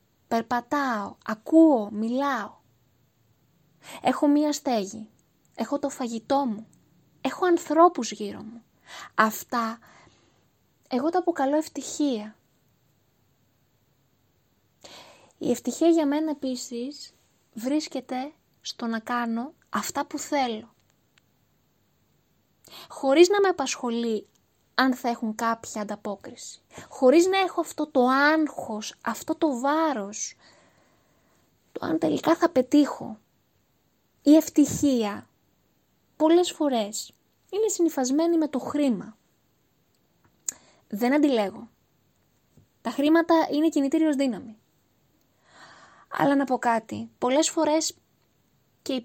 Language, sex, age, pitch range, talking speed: Greek, female, 20-39, 220-300 Hz, 95 wpm